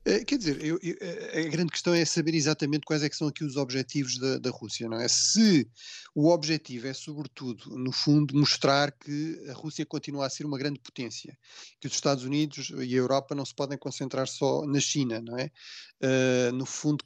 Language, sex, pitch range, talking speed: Portuguese, male, 135-155 Hz, 205 wpm